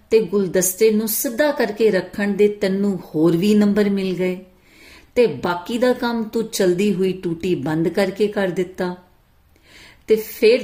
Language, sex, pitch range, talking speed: Punjabi, female, 175-220 Hz, 150 wpm